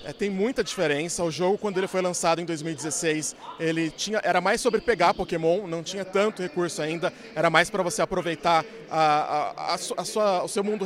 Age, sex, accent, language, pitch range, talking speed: 20-39, male, Brazilian, Portuguese, 165-195 Hz, 210 wpm